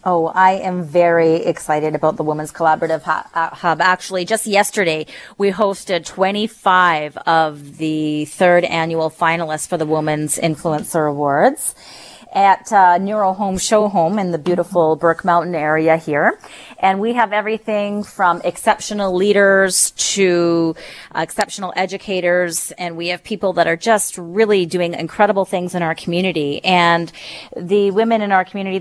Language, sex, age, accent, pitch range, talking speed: English, female, 30-49, American, 170-200 Hz, 145 wpm